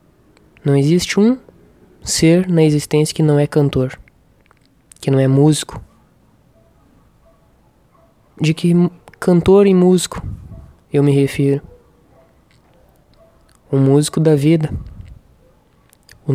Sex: male